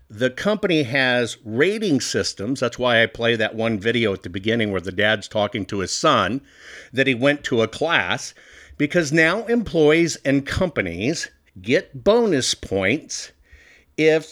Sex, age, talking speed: male, 50-69, 155 wpm